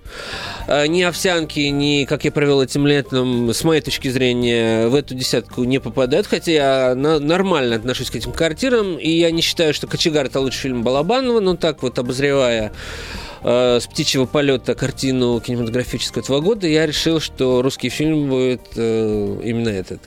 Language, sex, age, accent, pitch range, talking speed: Russian, male, 20-39, native, 120-155 Hz, 160 wpm